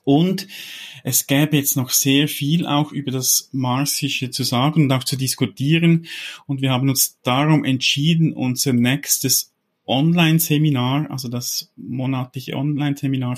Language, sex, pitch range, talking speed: German, male, 120-140 Hz, 135 wpm